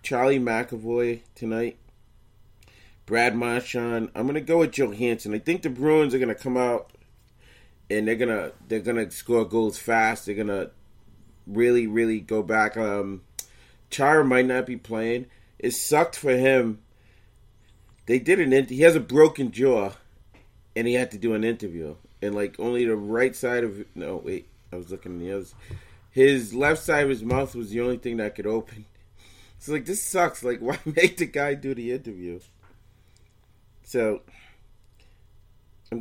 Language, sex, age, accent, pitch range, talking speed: English, male, 30-49, American, 105-130 Hz, 170 wpm